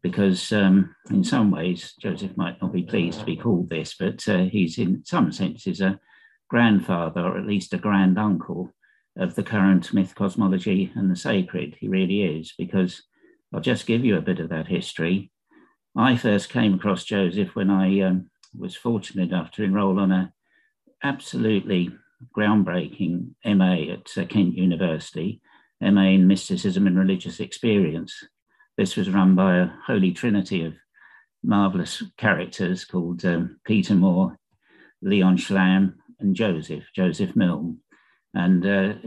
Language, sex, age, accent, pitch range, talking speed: English, male, 50-69, British, 95-110 Hz, 150 wpm